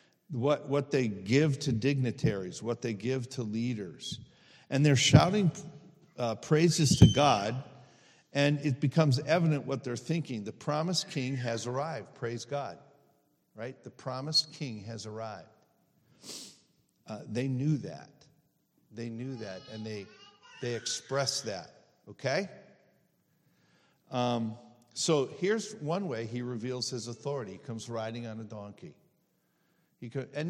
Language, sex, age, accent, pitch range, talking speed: English, male, 50-69, American, 115-150 Hz, 130 wpm